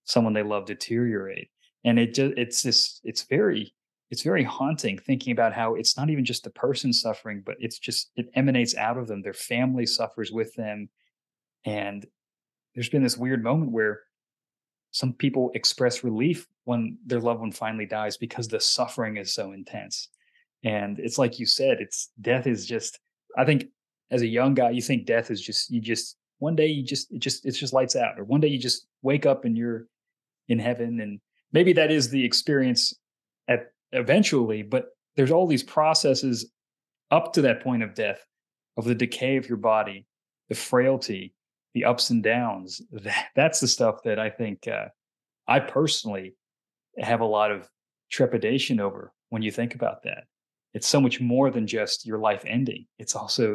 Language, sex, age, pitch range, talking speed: English, male, 20-39, 115-135 Hz, 185 wpm